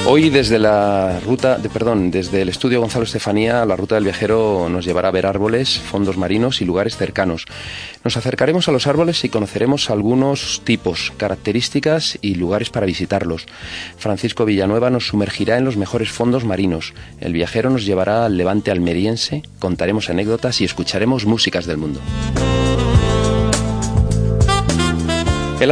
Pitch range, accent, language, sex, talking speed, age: 90-115 Hz, Spanish, Spanish, male, 145 wpm, 30-49